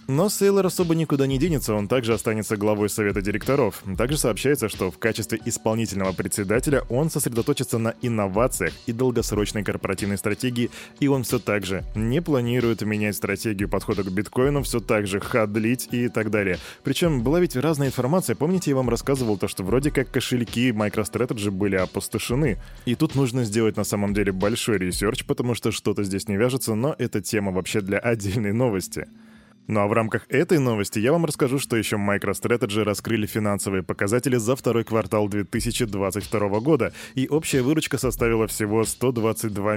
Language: Russian